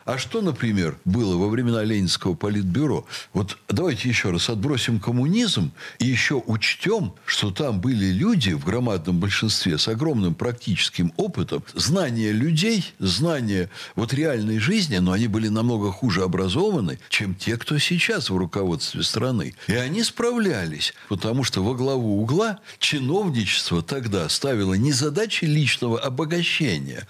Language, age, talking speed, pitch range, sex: Russian, 60-79, 135 wpm, 100-155 Hz, male